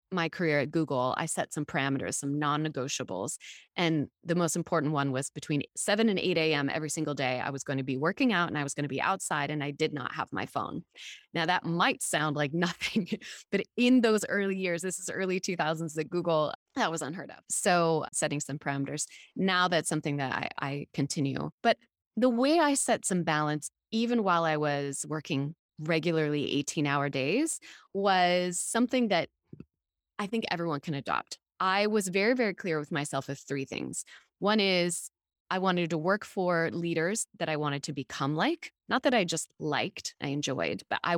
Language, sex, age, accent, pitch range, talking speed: English, female, 20-39, American, 145-185 Hz, 195 wpm